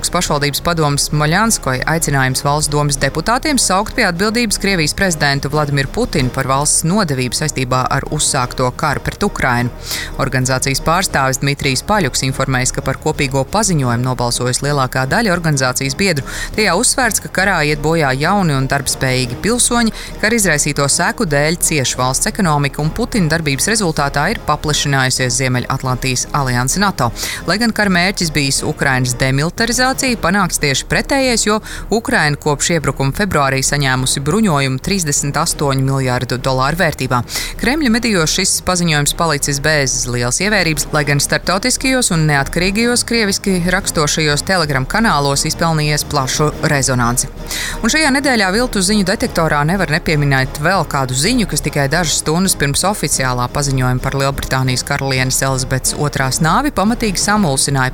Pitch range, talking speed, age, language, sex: 135-185 Hz, 135 wpm, 30-49, English, female